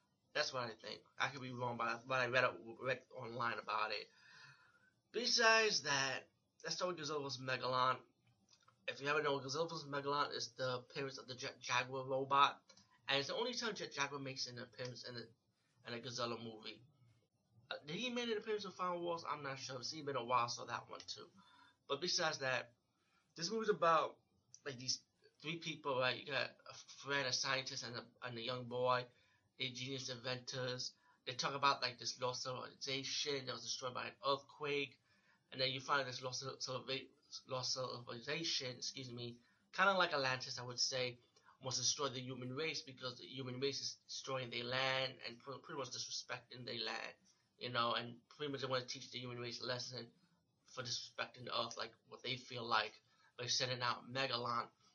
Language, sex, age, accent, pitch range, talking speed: English, male, 20-39, American, 125-140 Hz, 195 wpm